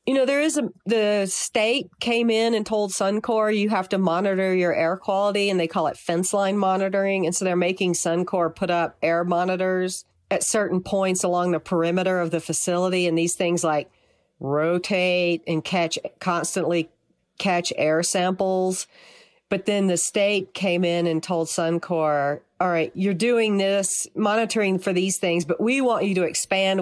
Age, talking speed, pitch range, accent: 50-69, 175 wpm, 160-195 Hz, American